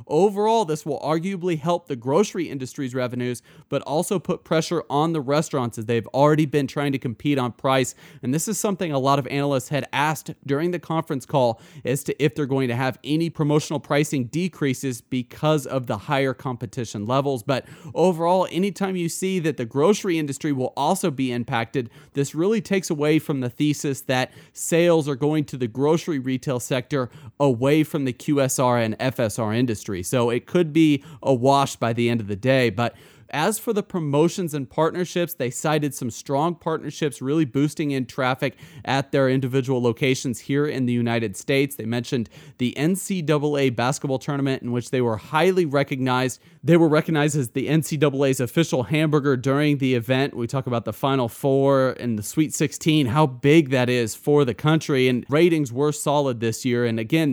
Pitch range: 130-155 Hz